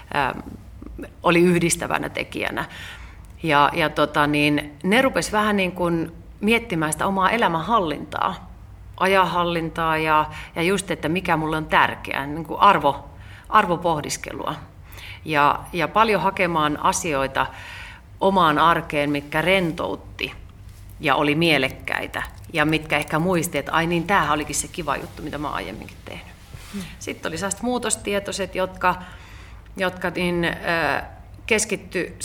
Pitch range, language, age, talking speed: 140-175 Hz, Finnish, 30-49, 120 wpm